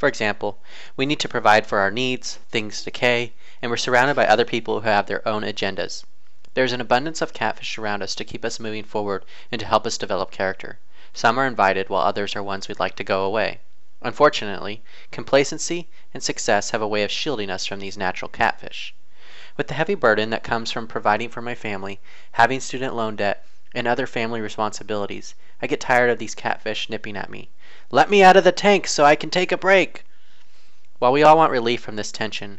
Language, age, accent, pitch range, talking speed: English, 30-49, American, 105-135 Hz, 210 wpm